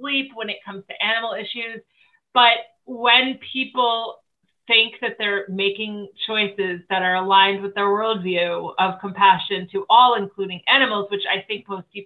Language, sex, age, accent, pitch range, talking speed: English, female, 30-49, American, 195-245 Hz, 155 wpm